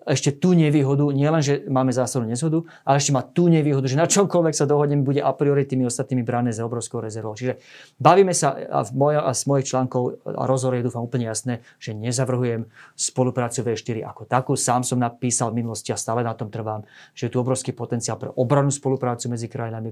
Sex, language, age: male, Slovak, 30-49